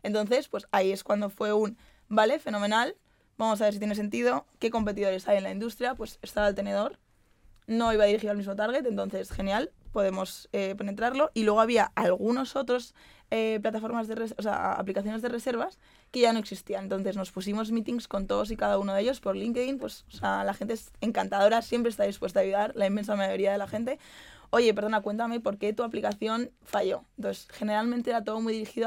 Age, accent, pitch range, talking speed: 20-39, Spanish, 195-225 Hz, 210 wpm